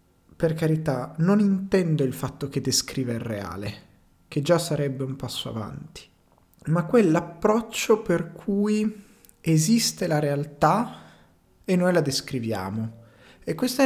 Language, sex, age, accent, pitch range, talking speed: Italian, male, 30-49, native, 125-170 Hz, 125 wpm